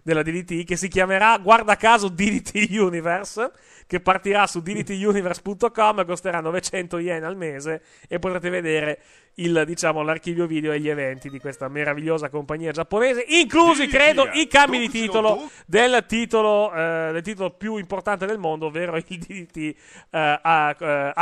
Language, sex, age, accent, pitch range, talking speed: Italian, male, 30-49, native, 155-200 Hz, 145 wpm